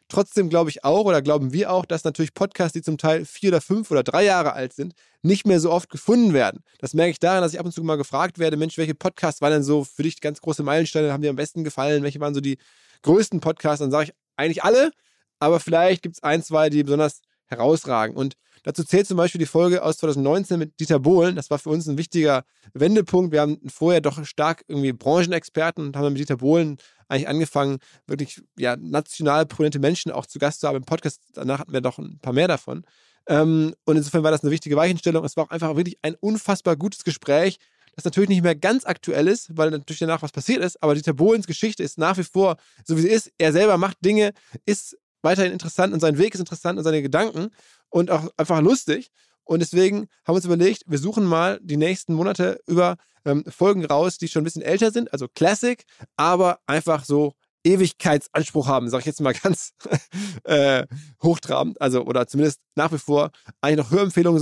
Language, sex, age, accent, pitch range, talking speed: German, male, 20-39, German, 150-180 Hz, 220 wpm